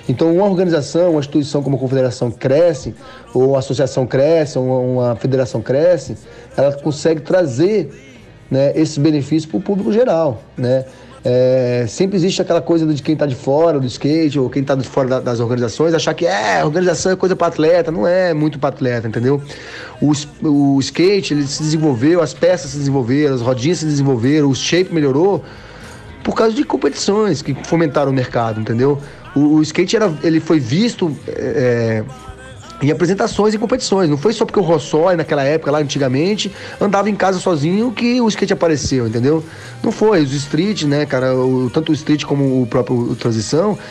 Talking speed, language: 185 wpm, Portuguese